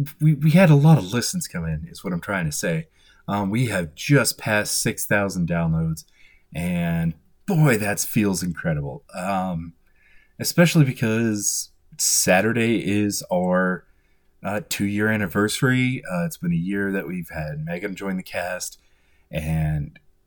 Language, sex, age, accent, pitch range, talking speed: English, male, 30-49, American, 80-130 Hz, 145 wpm